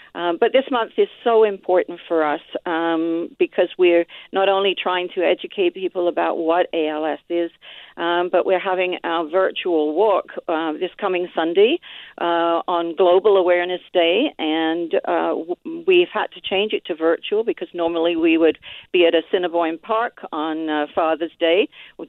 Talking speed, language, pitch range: 165 wpm, English, 165-205 Hz